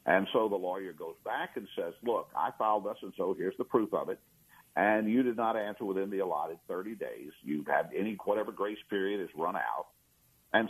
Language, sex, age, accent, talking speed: English, male, 50-69, American, 220 wpm